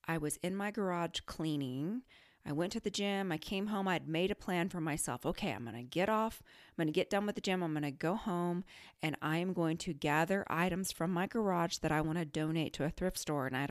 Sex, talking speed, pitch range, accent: female, 255 wpm, 155-200 Hz, American